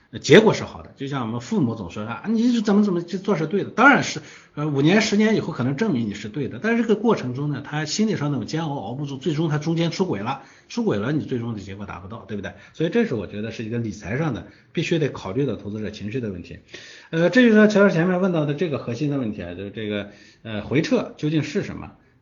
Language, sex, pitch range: Chinese, male, 105-160 Hz